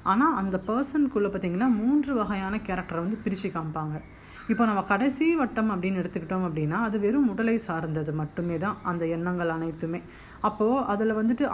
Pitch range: 170-225 Hz